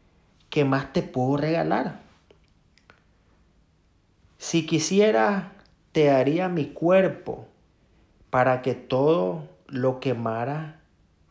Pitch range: 95-145 Hz